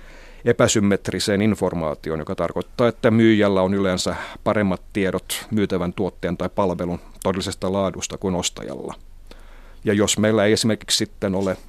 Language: Finnish